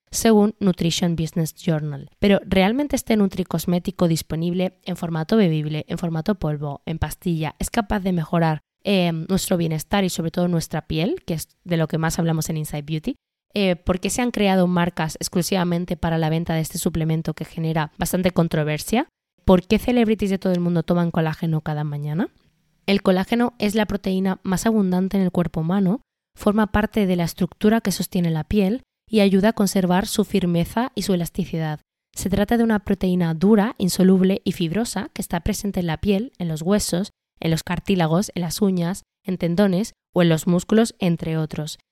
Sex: female